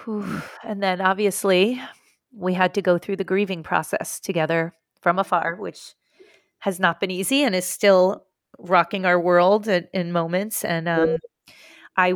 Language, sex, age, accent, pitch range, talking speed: English, female, 30-49, American, 165-200 Hz, 155 wpm